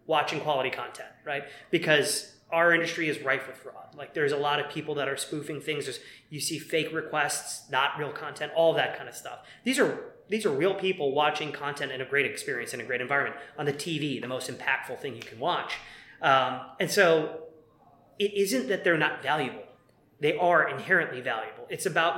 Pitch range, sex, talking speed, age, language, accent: 140-170 Hz, male, 205 wpm, 20-39, English, American